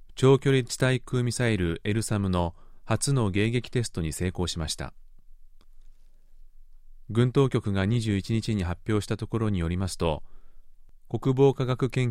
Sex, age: male, 30-49